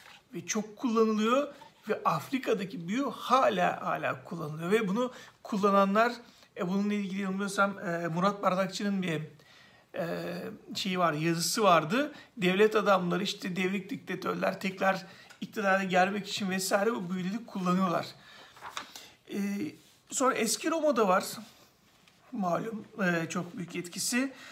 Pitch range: 190-230 Hz